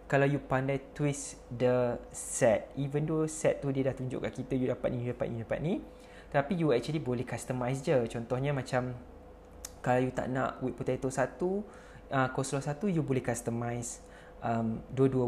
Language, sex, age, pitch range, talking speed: English, male, 20-39, 125-145 Hz, 175 wpm